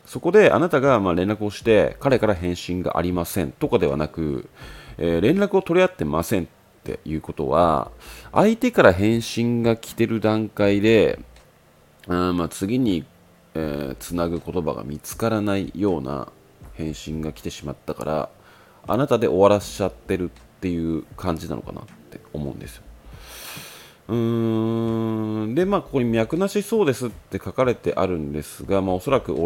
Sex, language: male, Japanese